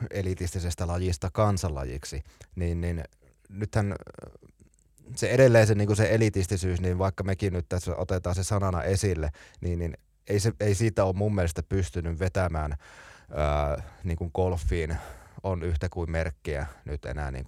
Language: Finnish